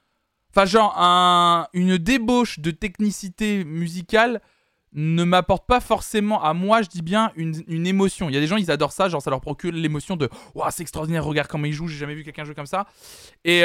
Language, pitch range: French, 140-200 Hz